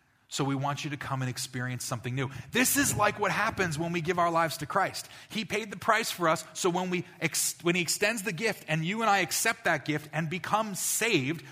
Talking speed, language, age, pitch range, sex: 245 wpm, English, 30-49, 140-205 Hz, male